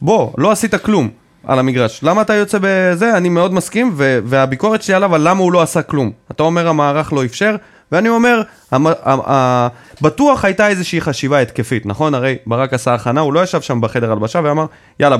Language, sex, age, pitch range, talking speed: Hebrew, male, 20-39, 135-195 Hz, 185 wpm